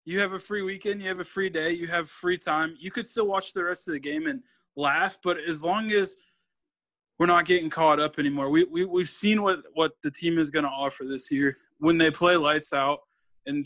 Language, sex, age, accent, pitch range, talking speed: English, male, 20-39, American, 145-185 Hz, 240 wpm